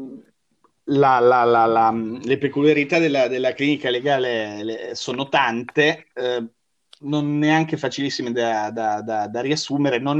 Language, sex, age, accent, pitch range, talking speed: Italian, male, 30-49, native, 110-135 Hz, 135 wpm